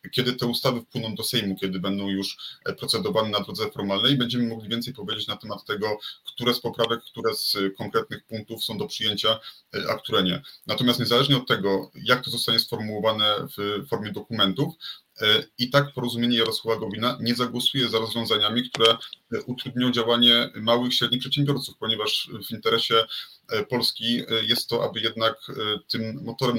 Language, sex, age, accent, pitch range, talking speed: Polish, male, 30-49, native, 105-125 Hz, 160 wpm